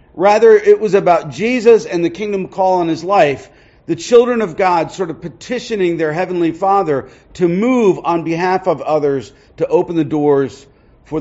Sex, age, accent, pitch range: male, 40-59, American, 150-205 Hz